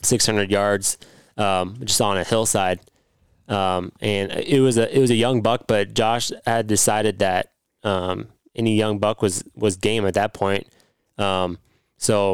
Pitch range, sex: 100-115 Hz, male